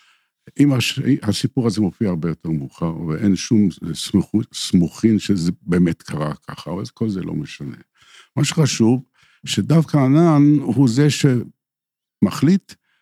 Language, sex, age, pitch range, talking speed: Hebrew, male, 60-79, 90-135 Hz, 130 wpm